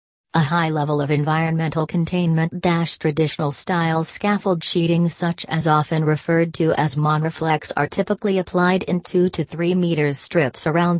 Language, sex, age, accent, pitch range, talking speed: English, female, 40-59, American, 150-175 Hz, 140 wpm